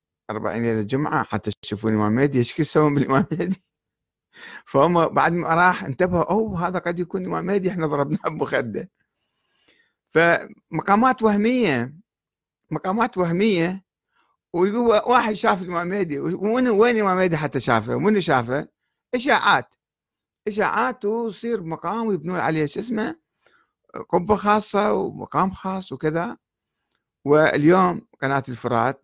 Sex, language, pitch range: male, Arabic, 120-185 Hz